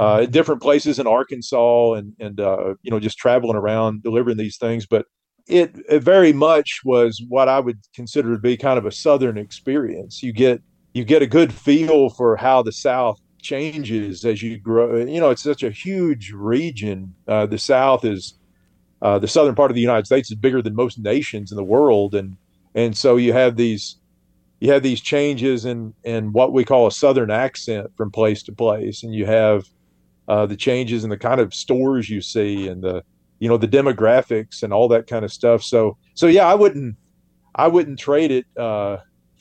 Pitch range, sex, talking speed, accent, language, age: 105-135 Hz, male, 200 wpm, American, English, 40-59